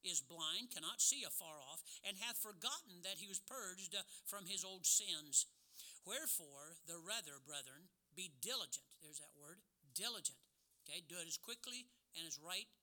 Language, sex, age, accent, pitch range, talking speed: English, male, 60-79, American, 155-205 Hz, 165 wpm